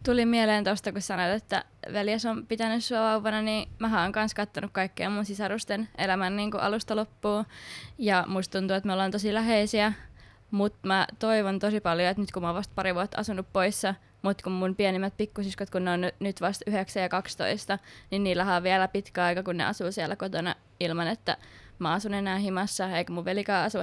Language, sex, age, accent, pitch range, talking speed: Finnish, female, 20-39, native, 190-220 Hz, 200 wpm